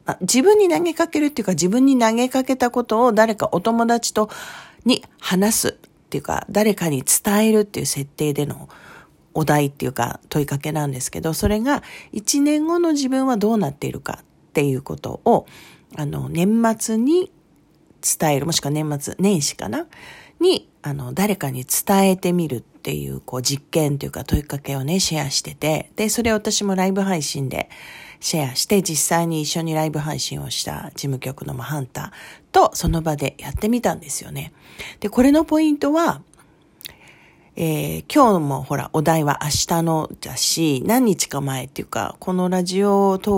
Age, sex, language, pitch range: 40-59, female, Japanese, 145-220 Hz